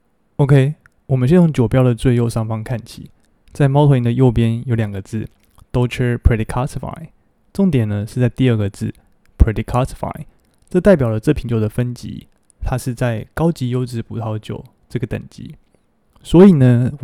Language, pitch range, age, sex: Chinese, 110-130 Hz, 20-39, male